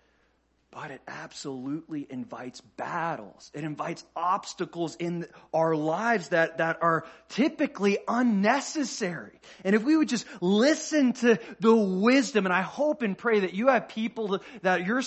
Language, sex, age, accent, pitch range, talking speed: English, male, 30-49, American, 175-240 Hz, 145 wpm